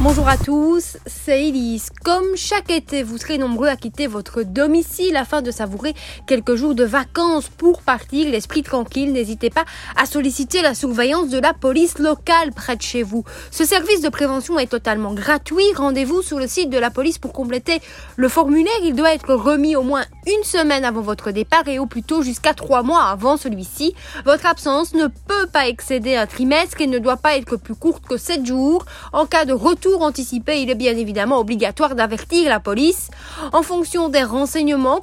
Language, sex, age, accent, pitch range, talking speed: French, female, 20-39, French, 245-310 Hz, 195 wpm